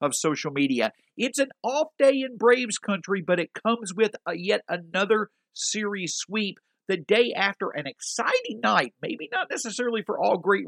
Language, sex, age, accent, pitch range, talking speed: English, male, 50-69, American, 165-220 Hz, 170 wpm